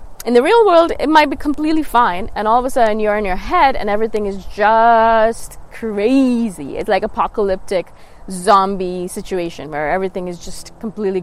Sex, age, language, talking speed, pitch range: female, 20-39, English, 175 wpm, 205-300 Hz